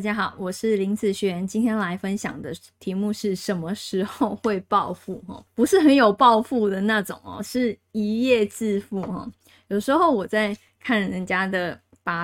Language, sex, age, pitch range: Chinese, female, 20-39, 190-245 Hz